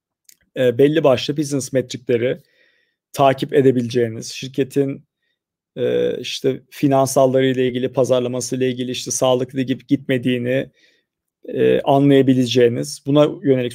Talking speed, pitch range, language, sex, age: 85 wpm, 130-160 Hz, Turkish, male, 40-59